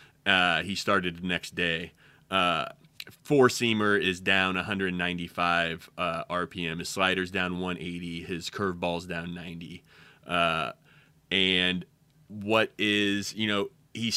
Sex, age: male, 30-49